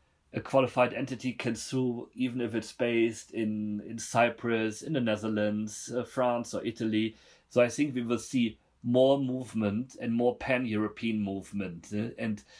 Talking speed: 155 wpm